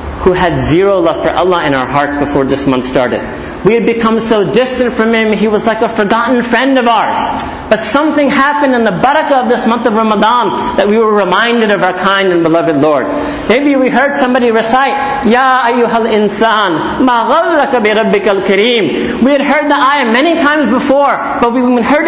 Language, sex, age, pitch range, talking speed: English, male, 50-69, 210-270 Hz, 195 wpm